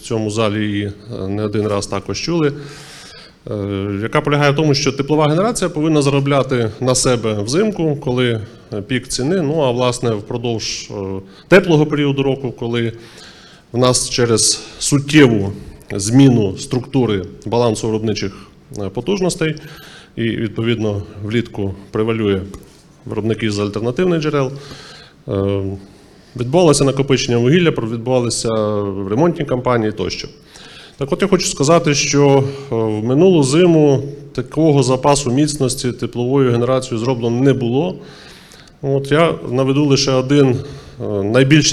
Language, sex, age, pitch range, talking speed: Ukrainian, male, 20-39, 110-140 Hz, 115 wpm